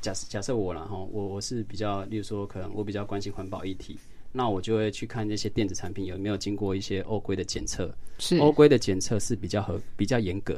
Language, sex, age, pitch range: Chinese, male, 20-39, 100-135 Hz